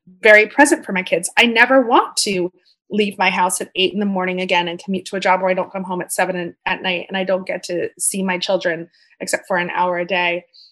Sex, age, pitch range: female, 20-39, 175-215 Hz